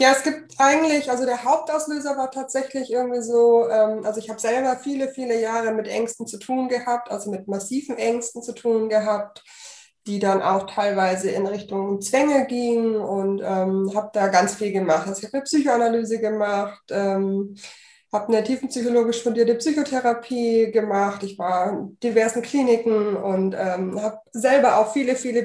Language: German